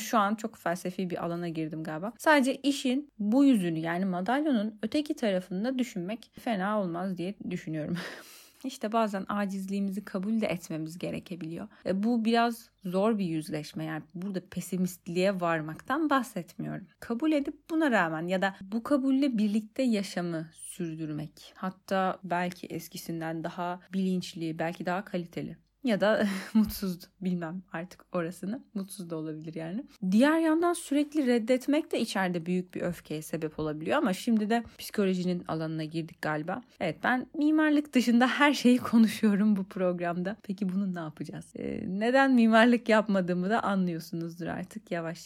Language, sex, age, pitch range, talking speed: Turkish, female, 30-49, 175-235 Hz, 140 wpm